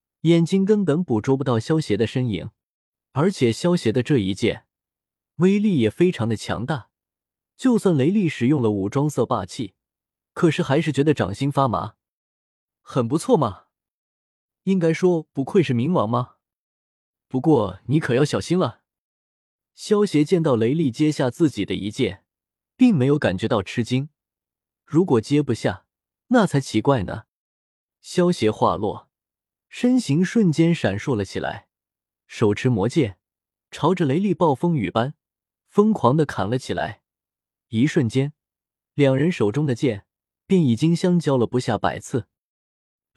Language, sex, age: Chinese, male, 20-39